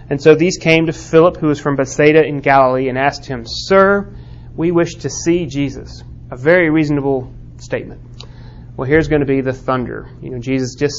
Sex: male